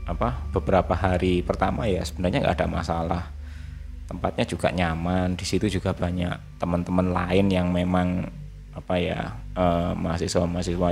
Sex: male